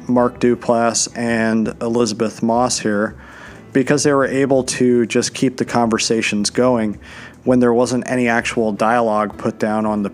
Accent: American